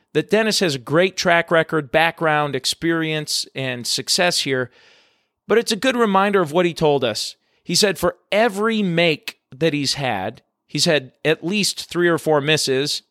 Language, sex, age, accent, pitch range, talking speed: English, male, 40-59, American, 135-170 Hz, 175 wpm